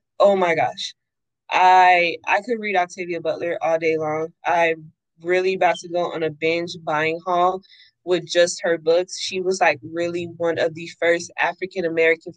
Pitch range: 170-215 Hz